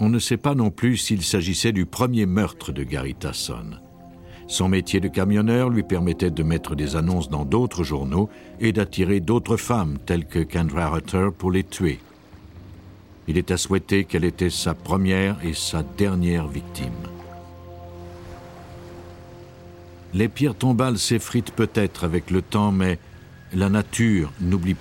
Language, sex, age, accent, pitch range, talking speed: French, male, 60-79, French, 85-110 Hz, 150 wpm